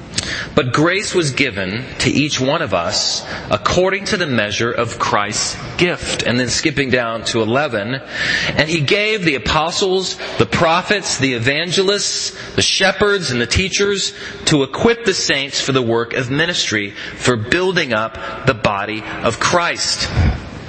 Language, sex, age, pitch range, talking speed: English, male, 30-49, 125-195 Hz, 150 wpm